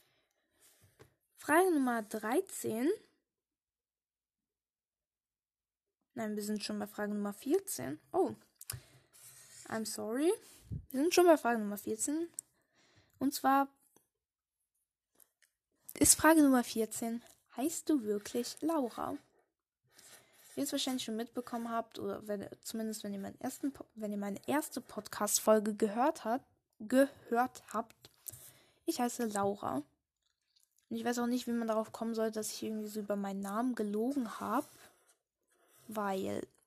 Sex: female